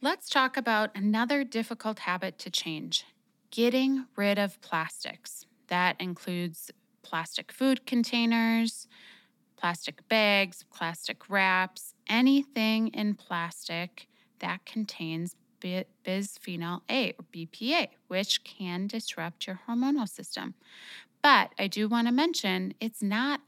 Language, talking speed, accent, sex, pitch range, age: English, 110 wpm, American, female, 180-235 Hz, 20-39